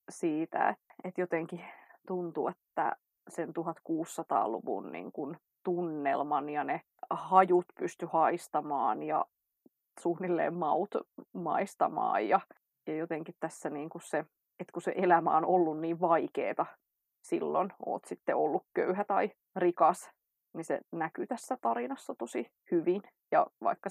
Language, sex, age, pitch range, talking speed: English, female, 20-39, 165-200 Hz, 125 wpm